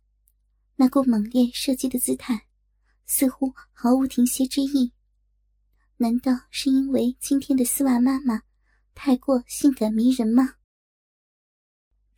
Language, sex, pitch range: Chinese, male, 240-270 Hz